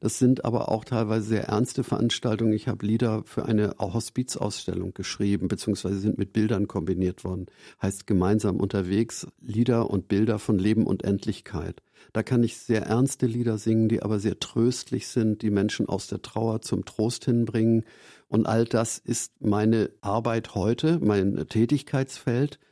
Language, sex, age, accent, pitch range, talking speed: German, male, 50-69, German, 100-120 Hz, 160 wpm